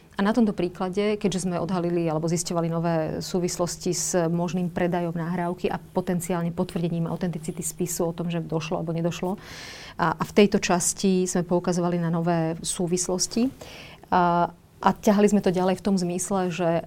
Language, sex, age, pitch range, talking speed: Slovak, female, 40-59, 170-185 Hz, 160 wpm